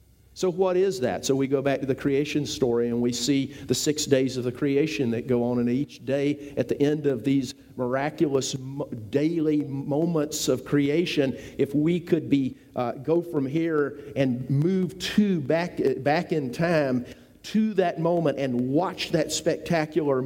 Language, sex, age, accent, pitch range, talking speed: English, male, 50-69, American, 135-170 Hz, 175 wpm